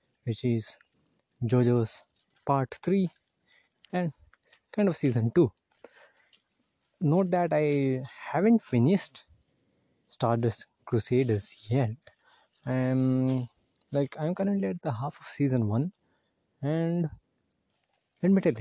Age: 20-39